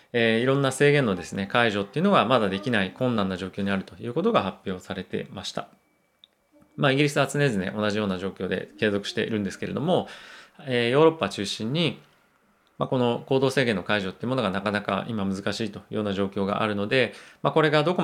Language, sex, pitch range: Japanese, male, 100-140 Hz